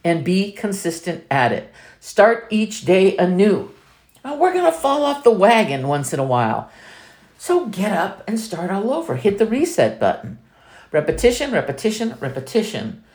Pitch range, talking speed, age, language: 140-225 Hz, 155 wpm, 50-69, English